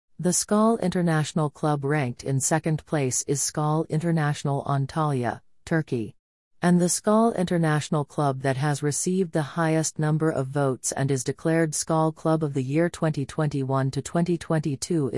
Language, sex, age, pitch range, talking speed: English, female, 40-59, 135-160 Hz, 140 wpm